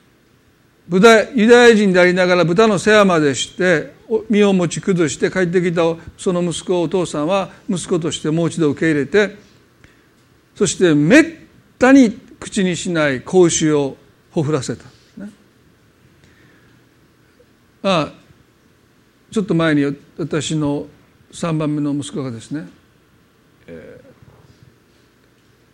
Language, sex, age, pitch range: Japanese, male, 50-69, 150-195 Hz